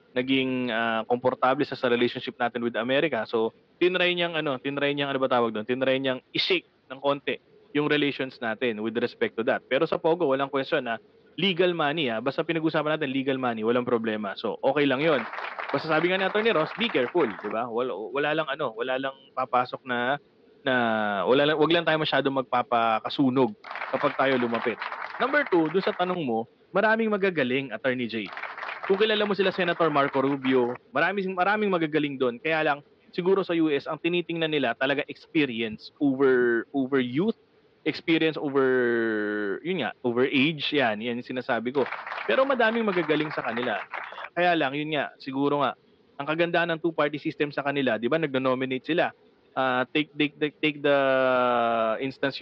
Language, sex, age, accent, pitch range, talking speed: English, male, 20-39, Filipino, 125-160 Hz, 175 wpm